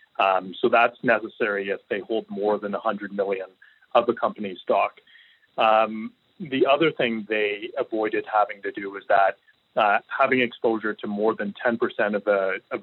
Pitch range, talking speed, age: 100-120 Hz, 175 wpm, 30-49